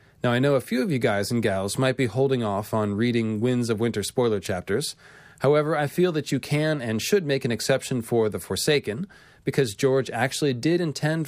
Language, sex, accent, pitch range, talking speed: English, male, American, 105-135 Hz, 215 wpm